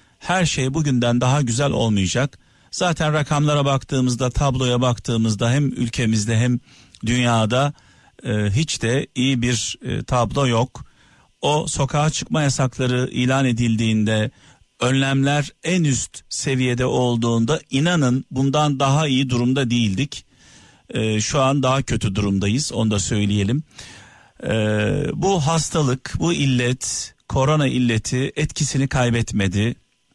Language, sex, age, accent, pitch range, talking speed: Turkish, male, 50-69, native, 115-145 Hz, 115 wpm